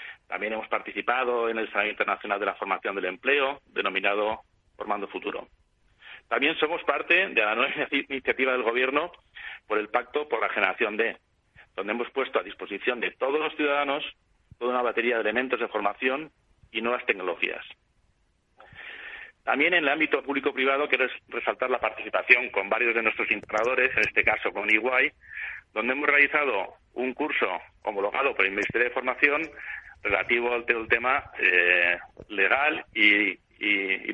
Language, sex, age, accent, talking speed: Spanish, male, 40-59, Spanish, 155 wpm